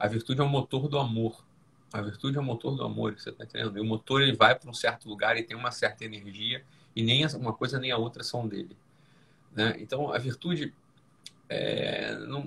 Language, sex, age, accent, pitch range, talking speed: Portuguese, male, 20-39, Brazilian, 110-140 Hz, 220 wpm